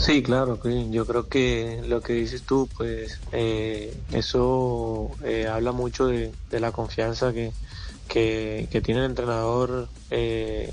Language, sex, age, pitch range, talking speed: Spanish, male, 20-39, 115-130 Hz, 145 wpm